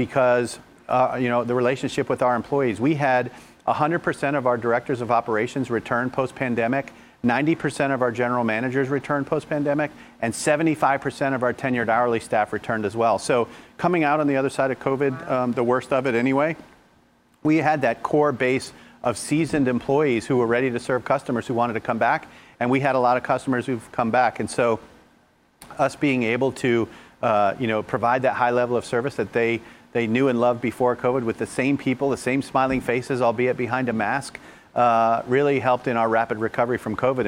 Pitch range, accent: 115-135 Hz, American